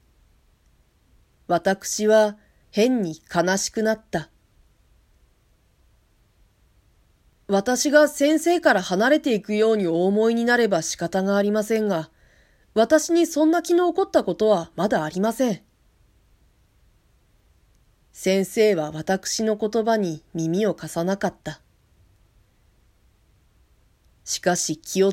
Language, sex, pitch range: Japanese, female, 155-215 Hz